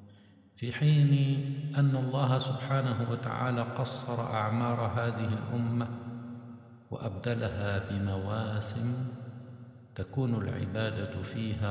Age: 60-79